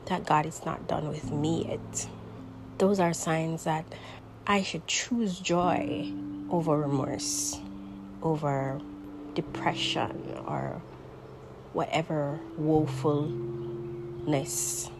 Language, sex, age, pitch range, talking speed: English, female, 30-49, 110-165 Hz, 90 wpm